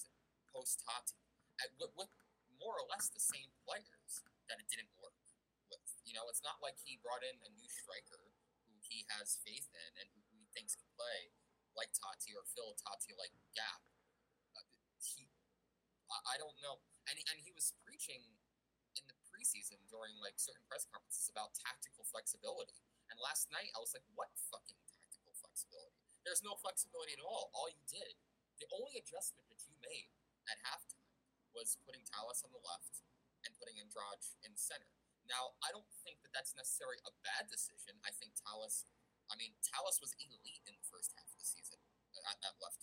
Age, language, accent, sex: 20-39, English, American, male